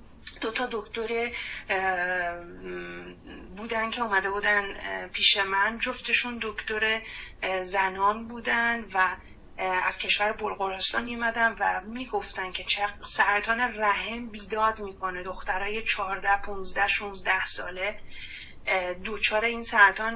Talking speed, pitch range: 95 wpm, 190-230 Hz